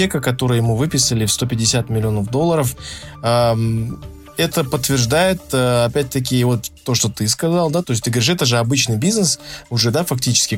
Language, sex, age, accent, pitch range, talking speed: Russian, male, 20-39, native, 115-145 Hz, 165 wpm